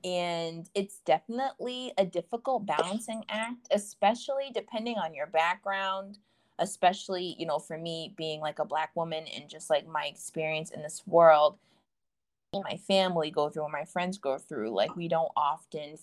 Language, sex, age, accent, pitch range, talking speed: English, female, 20-39, American, 155-200 Hz, 160 wpm